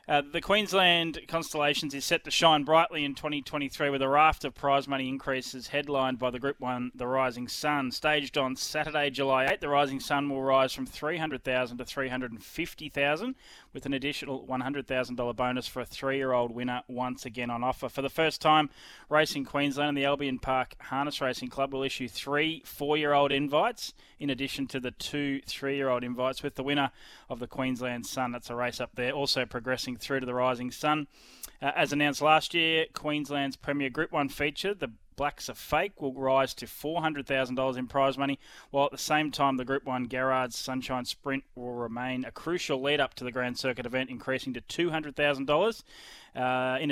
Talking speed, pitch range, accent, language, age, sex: 185 wpm, 130-150 Hz, Australian, English, 20-39, male